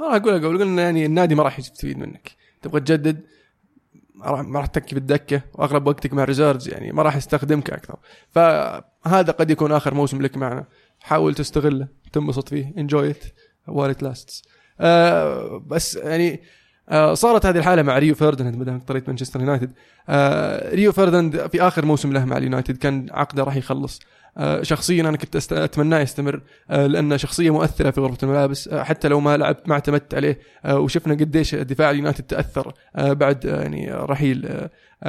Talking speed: 175 wpm